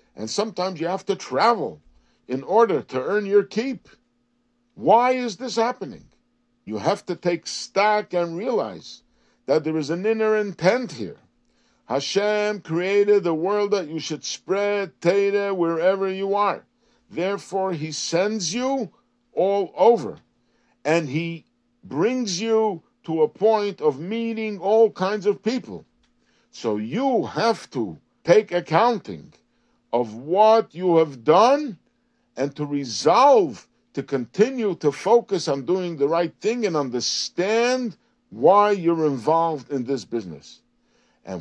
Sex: male